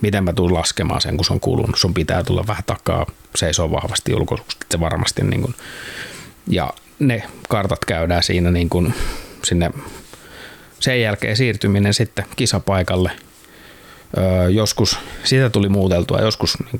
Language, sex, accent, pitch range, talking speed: Finnish, male, native, 90-105 Hz, 135 wpm